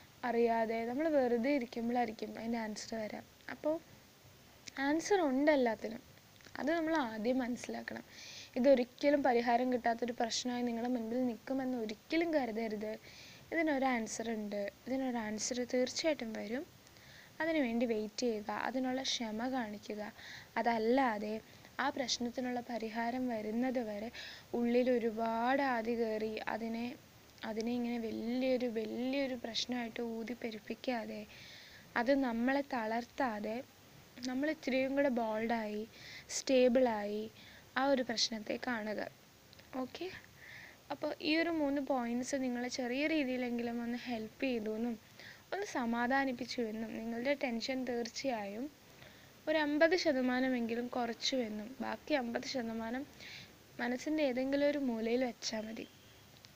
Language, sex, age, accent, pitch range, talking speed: Malayalam, female, 20-39, native, 230-270 Hz, 95 wpm